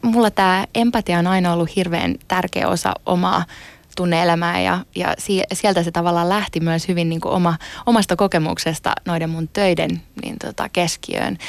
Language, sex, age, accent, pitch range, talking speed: Finnish, female, 20-39, native, 170-195 Hz, 155 wpm